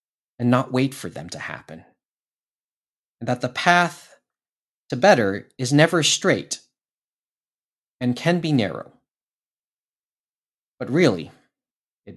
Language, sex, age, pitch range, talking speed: English, male, 30-49, 125-175 Hz, 115 wpm